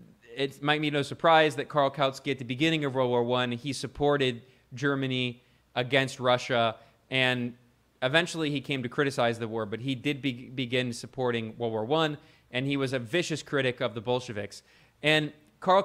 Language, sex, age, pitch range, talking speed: English, male, 20-39, 125-150 Hz, 180 wpm